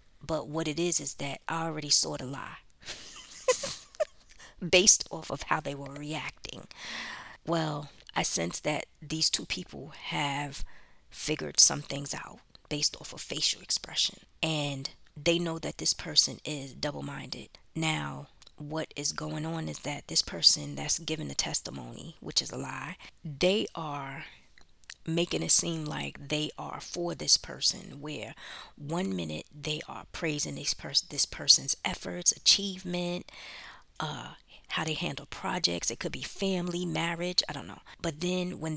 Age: 20-39